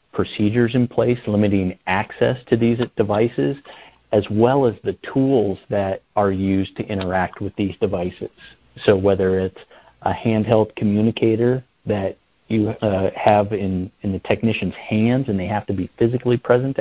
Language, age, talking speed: English, 40-59, 155 wpm